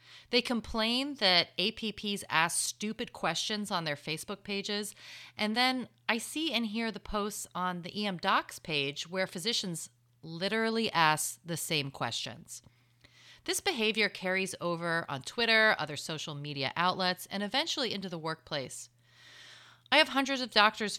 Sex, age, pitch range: female, 30-49, 145-220 Hz